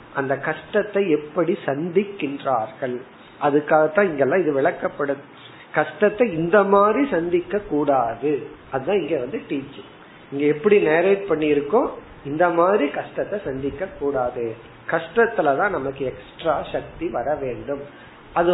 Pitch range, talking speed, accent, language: 140-185 Hz, 50 wpm, native, Tamil